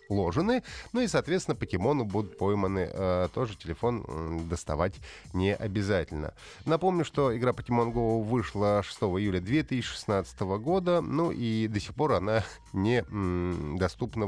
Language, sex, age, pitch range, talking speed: Russian, male, 30-49, 105-145 Hz, 125 wpm